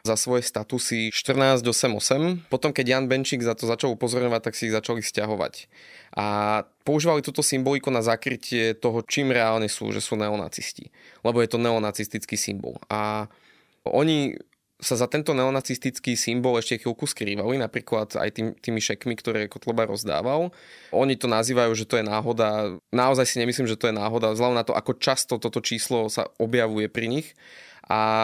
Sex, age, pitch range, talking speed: male, 20-39, 110-135 Hz, 170 wpm